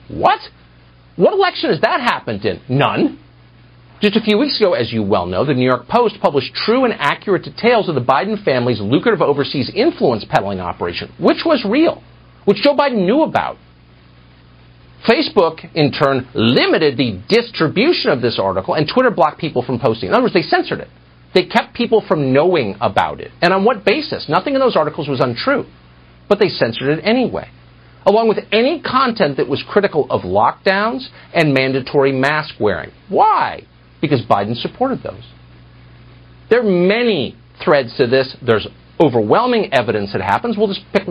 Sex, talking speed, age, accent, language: male, 170 wpm, 50-69, American, English